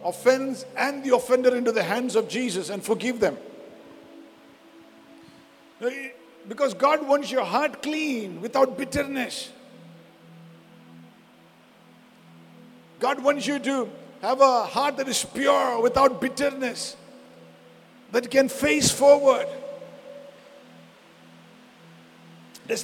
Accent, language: Indian, English